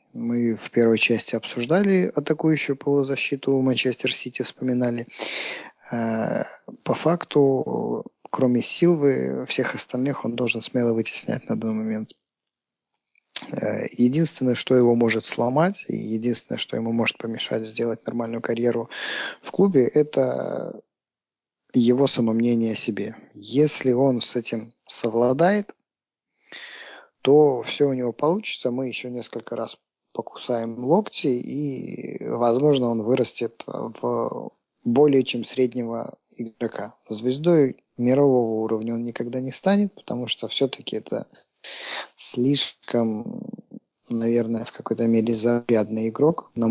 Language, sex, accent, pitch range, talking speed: Russian, male, native, 115-135 Hz, 115 wpm